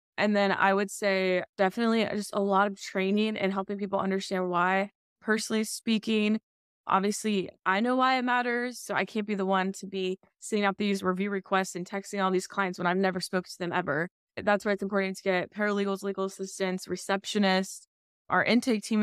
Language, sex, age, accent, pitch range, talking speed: English, female, 20-39, American, 185-210 Hz, 195 wpm